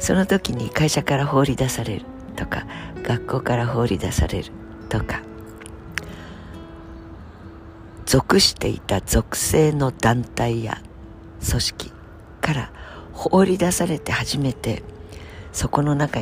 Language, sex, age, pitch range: Japanese, female, 50-69, 85-130 Hz